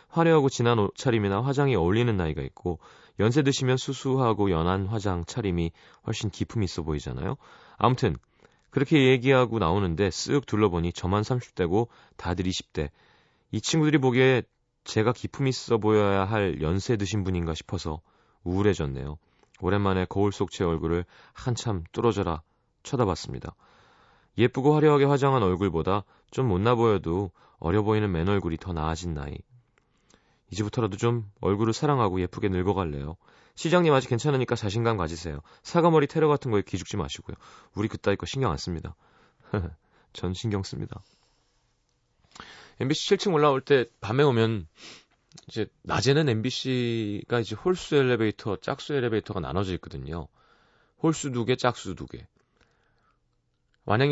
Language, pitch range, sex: Korean, 90-130 Hz, male